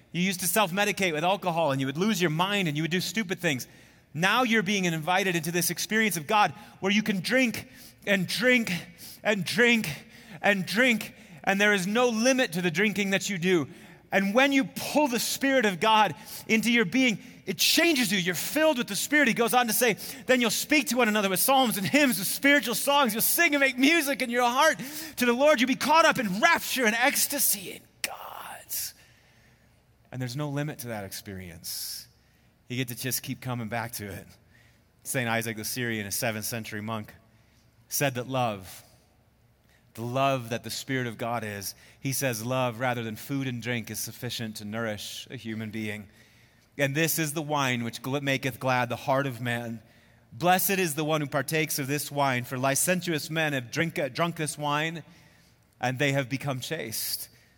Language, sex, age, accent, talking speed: English, male, 30-49, American, 195 wpm